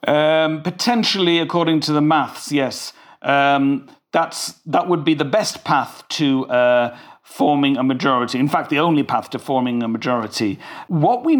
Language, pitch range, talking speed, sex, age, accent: English, 135-170 Hz, 165 wpm, male, 50-69, British